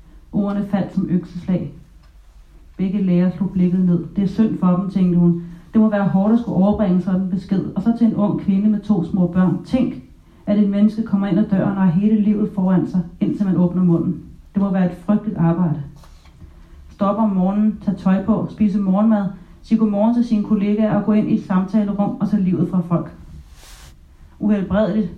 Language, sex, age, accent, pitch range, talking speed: Danish, female, 30-49, native, 175-200 Hz, 200 wpm